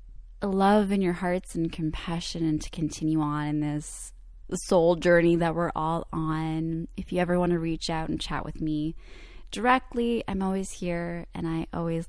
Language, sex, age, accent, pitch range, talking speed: English, female, 20-39, American, 160-195 Hz, 180 wpm